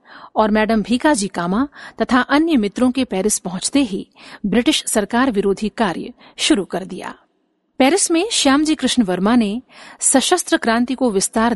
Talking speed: 150 wpm